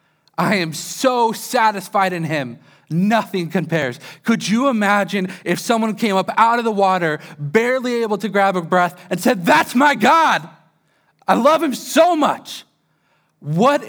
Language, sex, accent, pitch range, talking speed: English, male, American, 160-205 Hz, 155 wpm